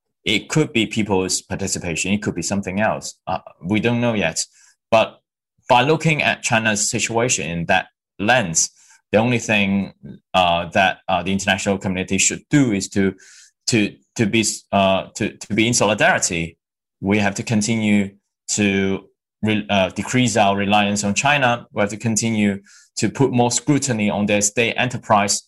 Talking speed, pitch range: 165 wpm, 95-115 Hz